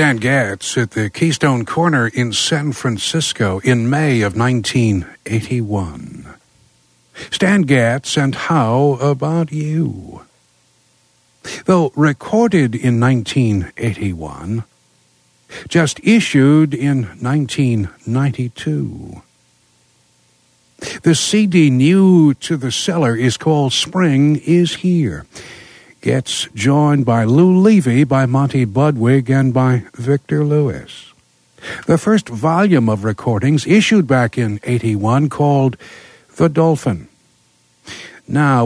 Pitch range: 100-150 Hz